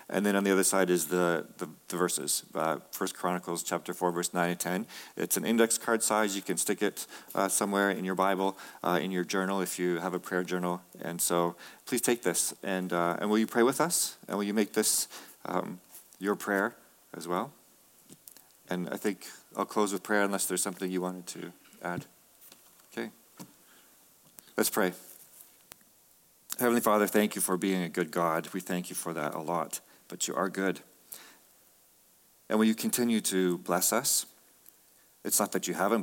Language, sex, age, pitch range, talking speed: English, male, 40-59, 90-105 Hz, 195 wpm